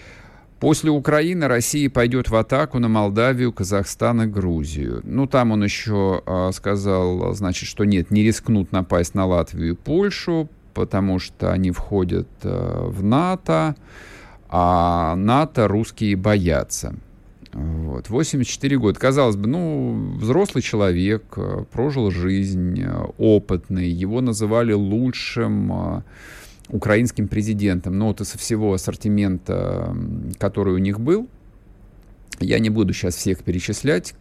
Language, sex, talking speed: Russian, male, 120 wpm